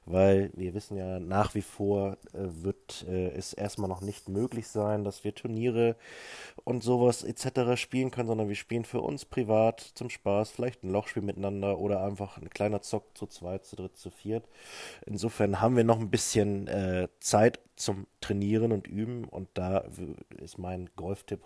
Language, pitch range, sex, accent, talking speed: German, 95-105 Hz, male, German, 180 wpm